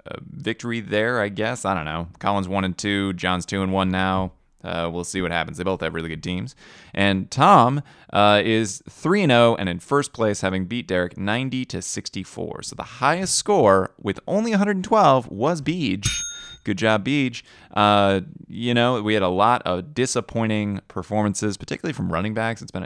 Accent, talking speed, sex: American, 200 wpm, male